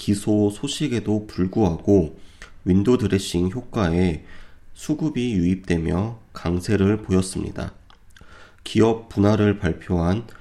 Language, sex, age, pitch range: Korean, male, 30-49, 90-115 Hz